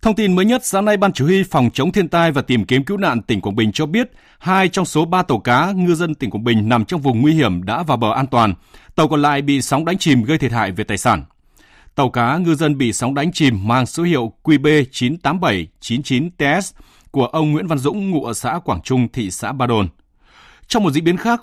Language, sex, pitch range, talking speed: Vietnamese, male, 120-170 Hz, 245 wpm